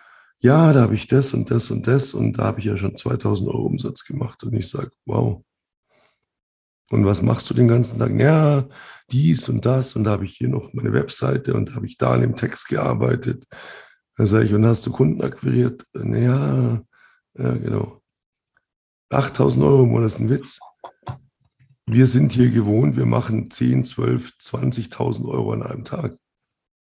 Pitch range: 110-130 Hz